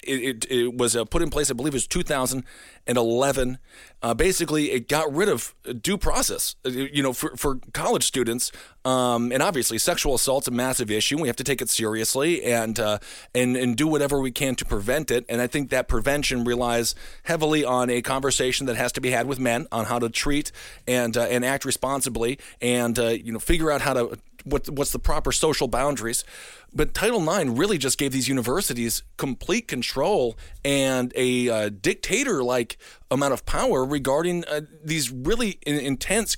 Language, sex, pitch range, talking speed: English, male, 120-150 Hz, 185 wpm